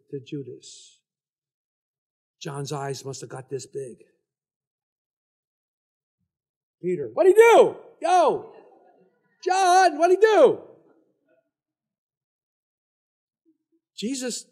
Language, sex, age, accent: English, male, 60-79, American